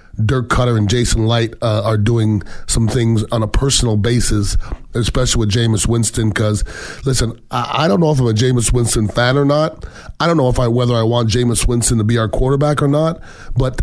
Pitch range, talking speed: 110-130 Hz, 215 wpm